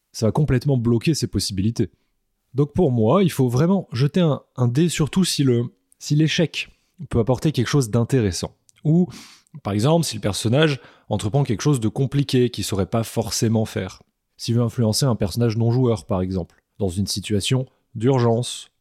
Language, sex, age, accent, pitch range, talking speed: French, male, 20-39, French, 110-145 Hz, 170 wpm